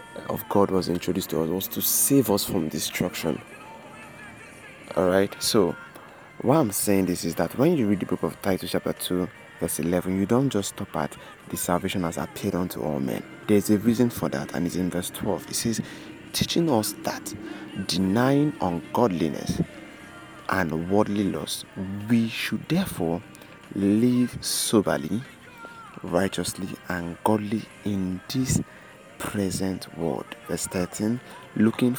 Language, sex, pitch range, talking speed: English, male, 90-110 Hz, 150 wpm